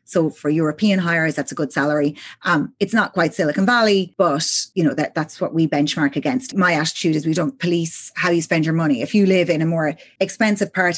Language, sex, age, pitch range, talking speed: English, female, 30-49, 165-245 Hz, 230 wpm